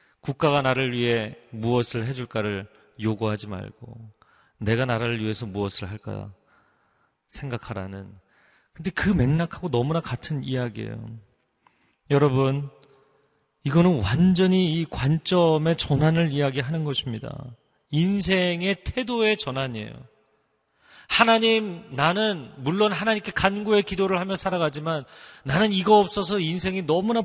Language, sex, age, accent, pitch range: Korean, male, 30-49, native, 115-160 Hz